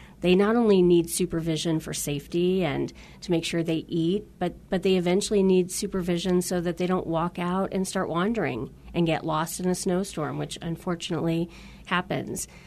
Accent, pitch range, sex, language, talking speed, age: American, 160-185 Hz, female, English, 175 wpm, 40-59